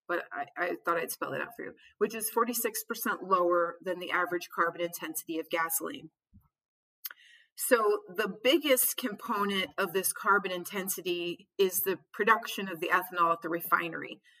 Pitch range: 175-215 Hz